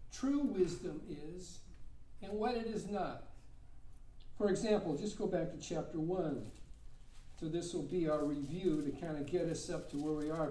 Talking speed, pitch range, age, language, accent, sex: 185 wpm, 170-225 Hz, 60-79, English, American, male